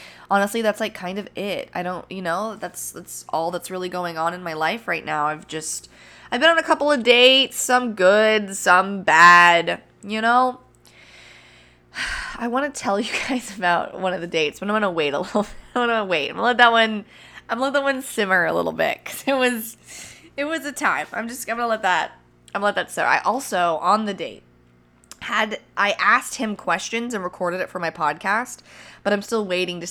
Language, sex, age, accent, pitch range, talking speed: English, female, 20-39, American, 160-215 Hz, 230 wpm